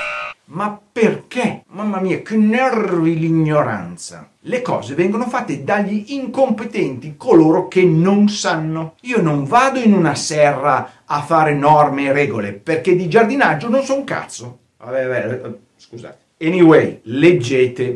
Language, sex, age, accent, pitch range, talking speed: Italian, male, 50-69, native, 130-200 Hz, 140 wpm